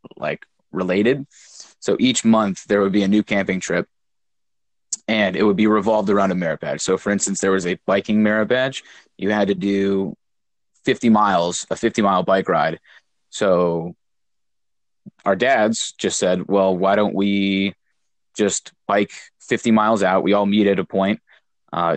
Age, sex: 20-39, male